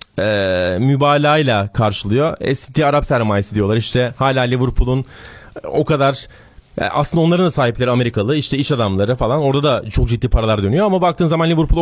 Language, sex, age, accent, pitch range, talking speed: Turkish, male, 30-49, native, 120-160 Hz, 155 wpm